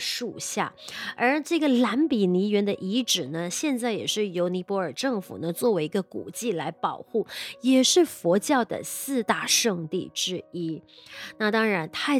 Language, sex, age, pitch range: Chinese, female, 20-39, 175-235 Hz